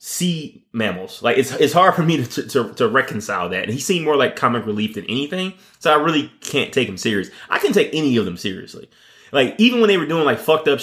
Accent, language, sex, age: American, English, male, 20-39